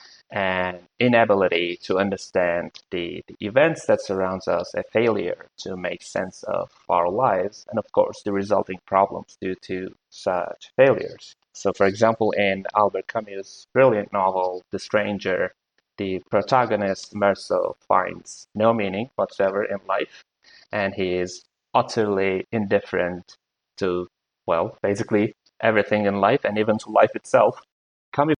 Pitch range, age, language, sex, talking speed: 95-115 Hz, 20-39, English, male, 135 wpm